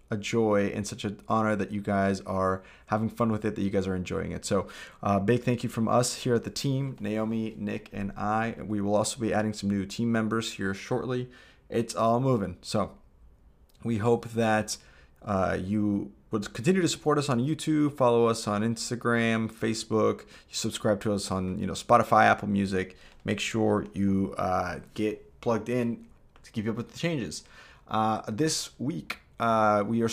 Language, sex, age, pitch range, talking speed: English, male, 30-49, 100-120 Hz, 190 wpm